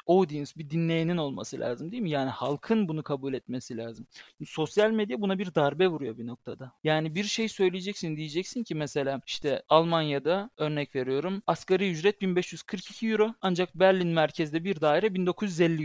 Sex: male